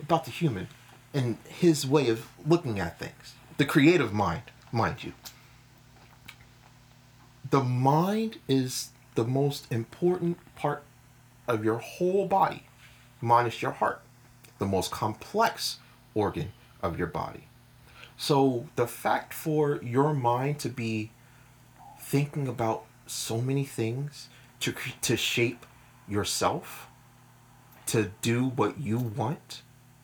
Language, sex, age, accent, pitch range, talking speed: English, male, 30-49, American, 120-135 Hz, 115 wpm